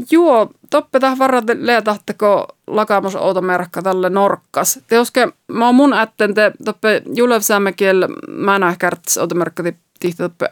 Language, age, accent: English, 30-49, Finnish